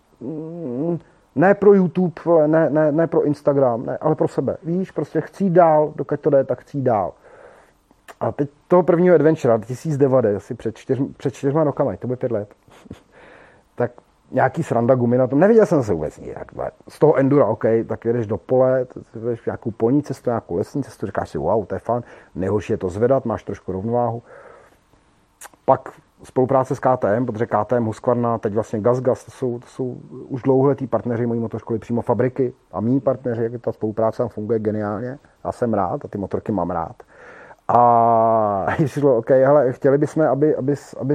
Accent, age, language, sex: native, 30-49, Czech, male